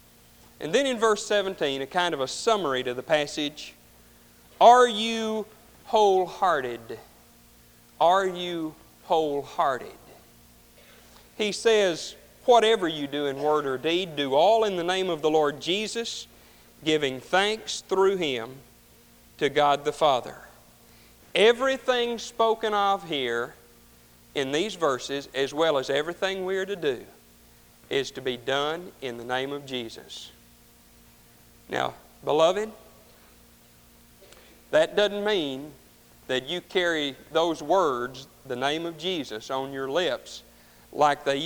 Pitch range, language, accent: 135-205 Hz, English, American